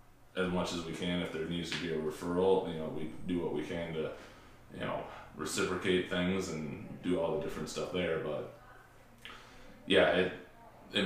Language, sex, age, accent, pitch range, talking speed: English, male, 20-39, American, 80-95 Hz, 190 wpm